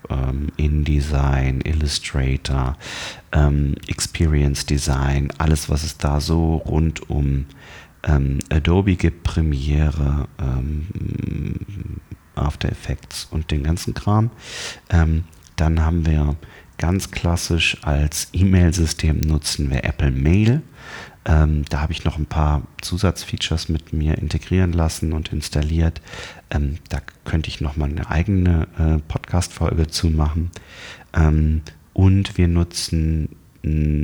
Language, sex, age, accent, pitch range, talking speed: German, male, 40-59, German, 75-90 Hz, 105 wpm